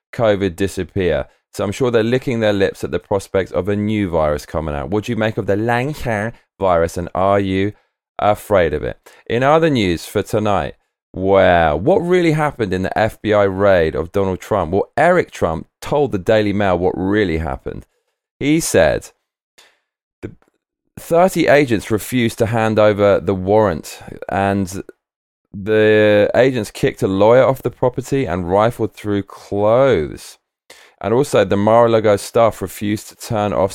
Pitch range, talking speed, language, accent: 95-115 Hz, 160 wpm, English, British